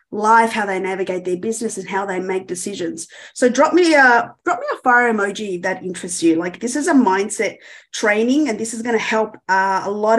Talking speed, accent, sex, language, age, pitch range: 225 wpm, Australian, female, English, 30-49, 200-245 Hz